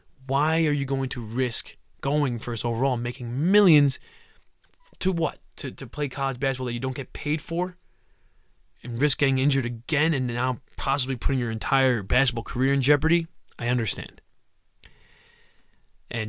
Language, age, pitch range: English, 20-39, 125-155 Hz